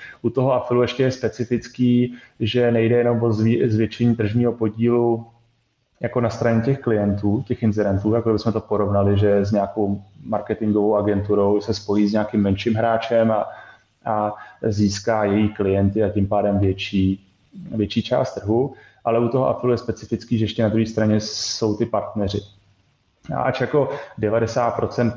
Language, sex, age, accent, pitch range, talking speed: Czech, male, 20-39, native, 105-115 Hz, 155 wpm